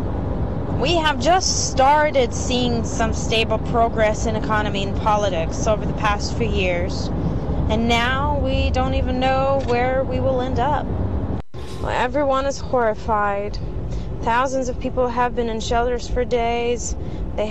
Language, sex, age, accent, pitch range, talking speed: English, female, 20-39, American, 170-250 Hz, 140 wpm